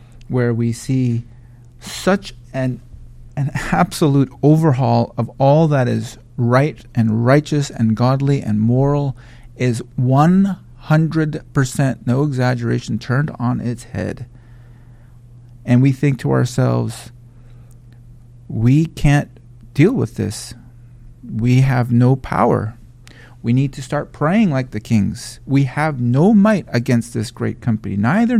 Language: English